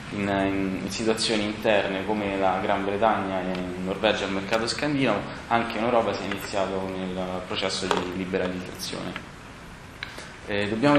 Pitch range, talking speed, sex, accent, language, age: 95-115 Hz, 155 wpm, male, native, Italian, 20-39